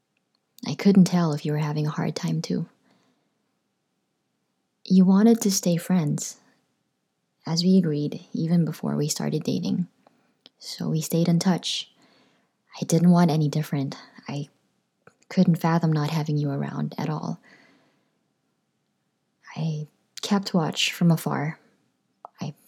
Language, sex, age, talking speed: English, female, 20-39, 125 wpm